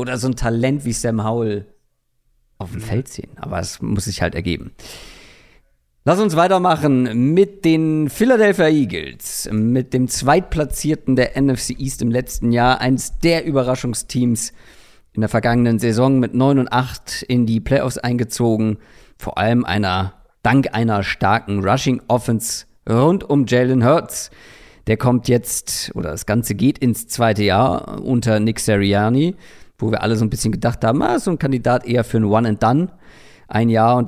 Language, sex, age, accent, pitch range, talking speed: German, male, 50-69, German, 110-135 Hz, 165 wpm